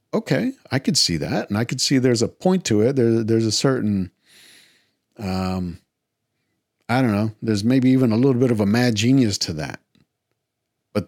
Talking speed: 190 wpm